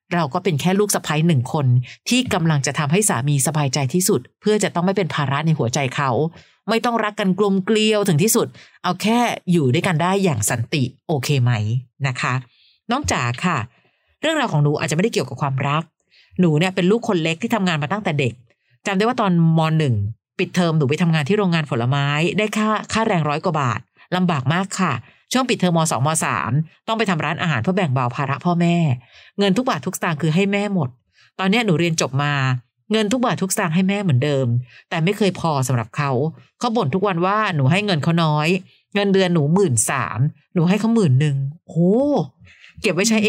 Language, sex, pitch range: Thai, female, 145-200 Hz